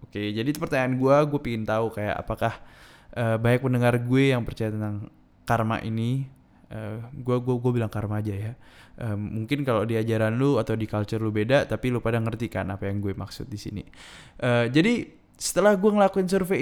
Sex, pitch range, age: male, 110-165 Hz, 20-39